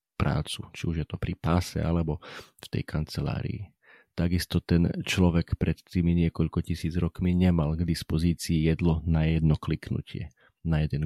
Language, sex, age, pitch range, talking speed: Slovak, male, 40-59, 80-90 Hz, 150 wpm